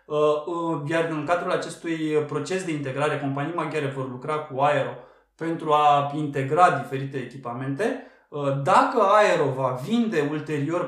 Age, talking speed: 20-39, 125 wpm